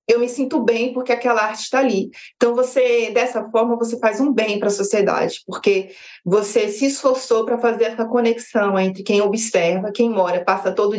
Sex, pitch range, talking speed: female, 205-260 Hz, 190 wpm